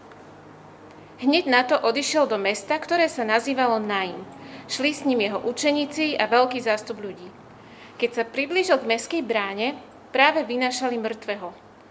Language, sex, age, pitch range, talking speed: Slovak, female, 30-49, 210-265 Hz, 140 wpm